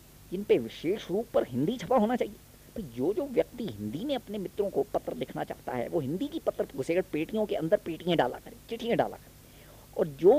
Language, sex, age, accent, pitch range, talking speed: Hindi, female, 20-39, native, 155-255 Hz, 215 wpm